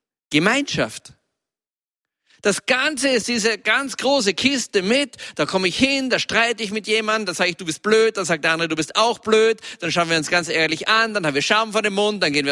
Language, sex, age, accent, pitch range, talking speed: German, male, 50-69, German, 170-220 Hz, 235 wpm